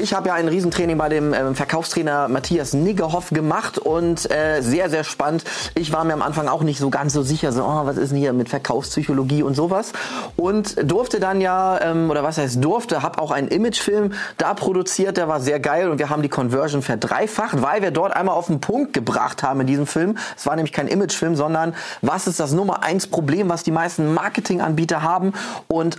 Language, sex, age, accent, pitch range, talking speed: German, male, 30-49, German, 130-170 Hz, 215 wpm